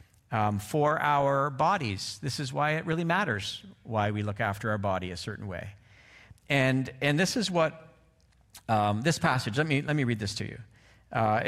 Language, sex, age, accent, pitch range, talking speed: English, male, 50-69, American, 110-150 Hz, 190 wpm